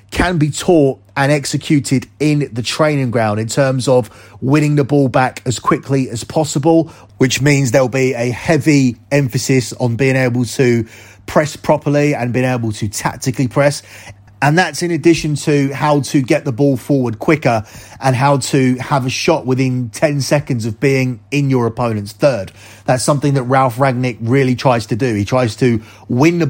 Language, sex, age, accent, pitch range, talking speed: English, male, 30-49, British, 120-145 Hz, 180 wpm